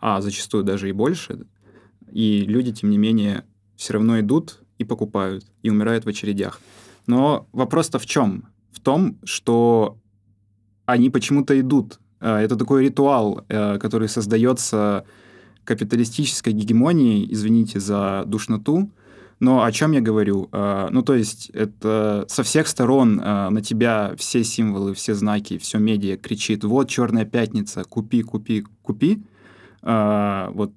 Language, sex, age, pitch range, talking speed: Russian, male, 20-39, 105-125 Hz, 130 wpm